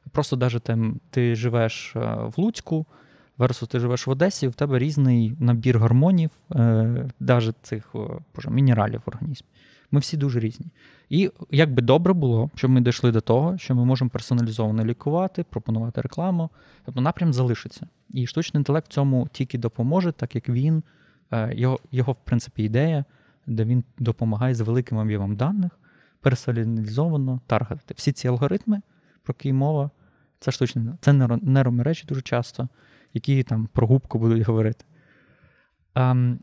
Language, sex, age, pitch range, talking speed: Ukrainian, male, 20-39, 120-150 Hz, 145 wpm